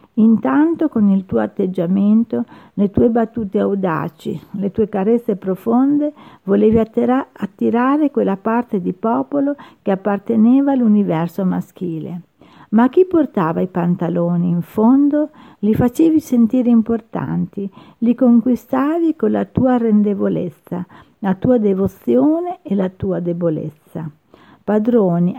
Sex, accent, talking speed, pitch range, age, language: female, native, 115 wpm, 180-245 Hz, 50-69, Italian